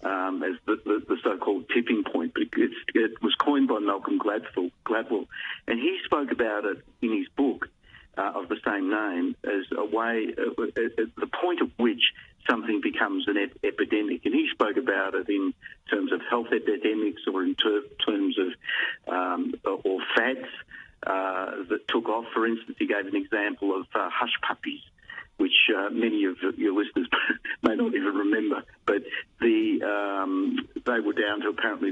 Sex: male